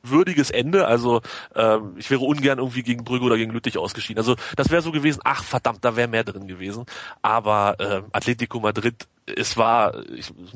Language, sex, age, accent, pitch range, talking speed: German, male, 30-49, German, 110-135 Hz, 190 wpm